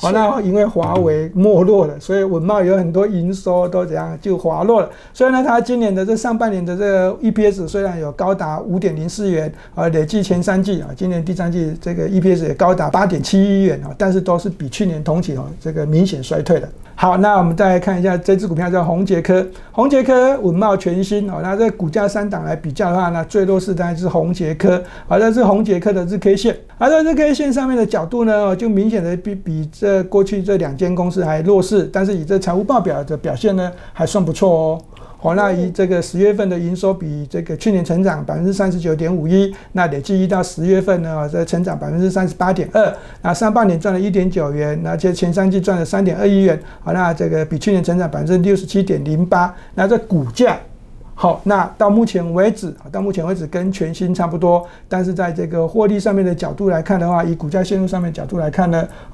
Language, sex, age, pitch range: Chinese, male, 50-69, 170-200 Hz